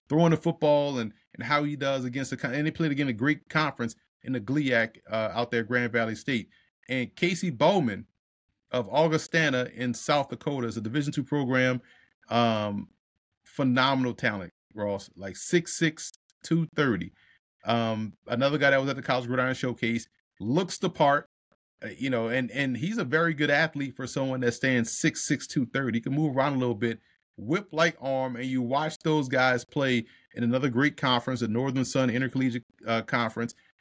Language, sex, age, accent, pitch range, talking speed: English, male, 30-49, American, 120-145 Hz, 185 wpm